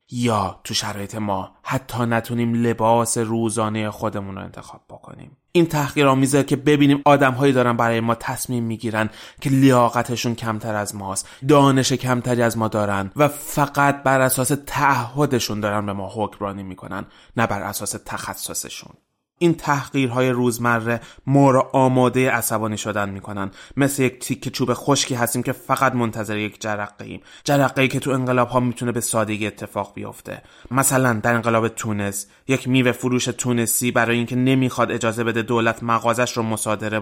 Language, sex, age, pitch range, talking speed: Persian, male, 20-39, 105-130 Hz, 150 wpm